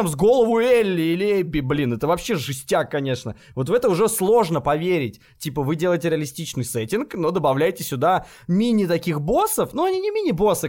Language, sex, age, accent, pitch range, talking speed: Russian, male, 20-39, native, 125-195 Hz, 170 wpm